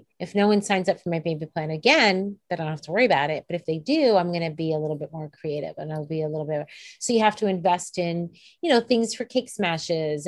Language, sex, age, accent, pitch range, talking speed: English, female, 30-49, American, 170-225 Hz, 290 wpm